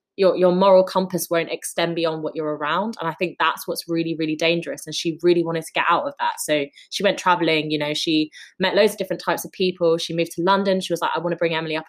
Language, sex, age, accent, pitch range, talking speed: English, female, 20-39, British, 150-185 Hz, 275 wpm